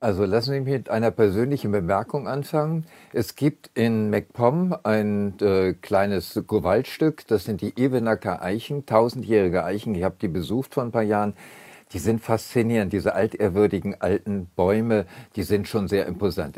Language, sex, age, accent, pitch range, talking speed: German, male, 50-69, German, 100-115 Hz, 160 wpm